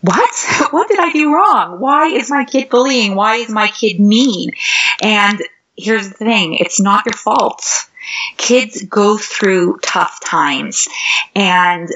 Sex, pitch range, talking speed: female, 175-225 Hz, 150 wpm